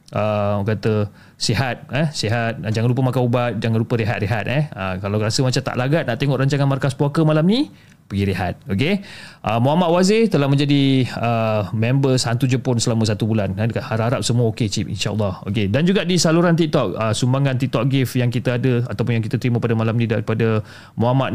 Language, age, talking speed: Malay, 20-39, 195 wpm